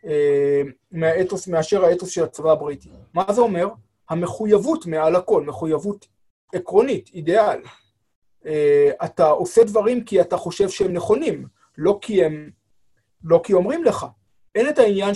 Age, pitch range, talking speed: 30-49, 155-215 Hz, 140 wpm